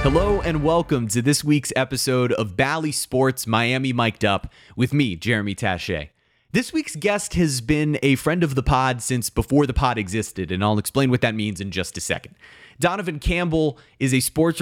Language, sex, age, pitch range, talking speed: English, male, 30-49, 110-145 Hz, 195 wpm